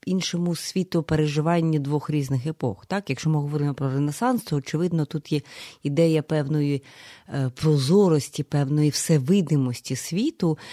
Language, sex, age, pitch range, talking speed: Ukrainian, female, 30-49, 145-175 Hz, 115 wpm